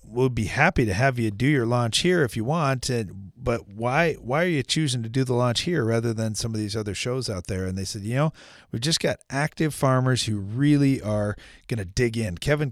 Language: English